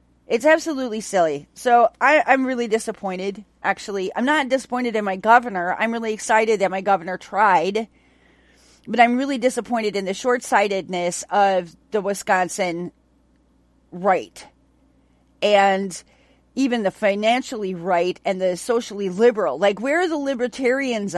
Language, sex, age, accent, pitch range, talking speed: English, female, 40-59, American, 190-260 Hz, 130 wpm